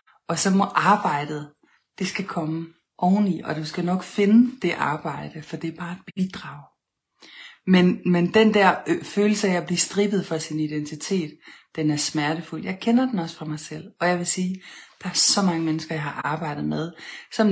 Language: Danish